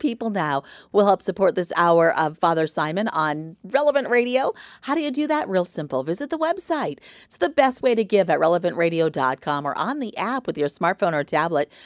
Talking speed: 200 wpm